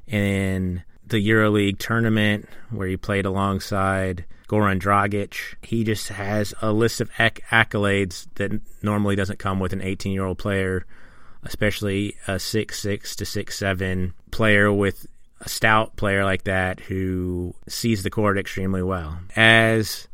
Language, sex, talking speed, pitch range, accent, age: English, male, 135 wpm, 95-105 Hz, American, 30-49